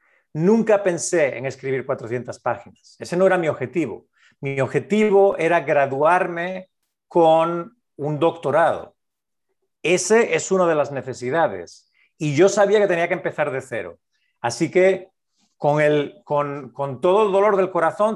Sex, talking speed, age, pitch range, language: male, 145 wpm, 50-69, 145-190 Hz, English